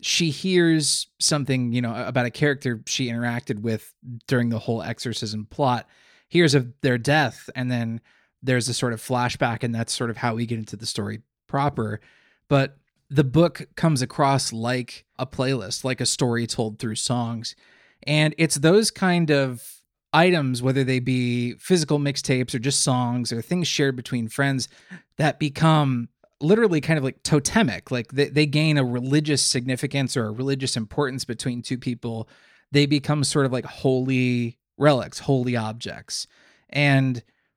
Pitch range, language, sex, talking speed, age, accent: 120-145 Hz, English, male, 165 wpm, 20-39, American